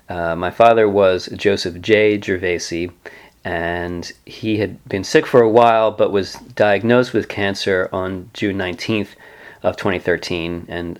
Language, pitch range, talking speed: English, 90-110 Hz, 140 wpm